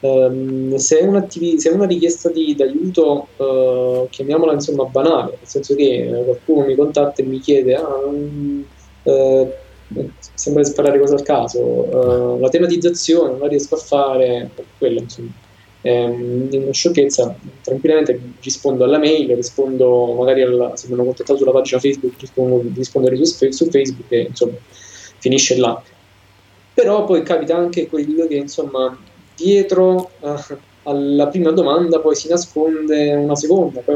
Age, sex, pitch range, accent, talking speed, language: 20-39, male, 125-155 Hz, native, 150 wpm, Italian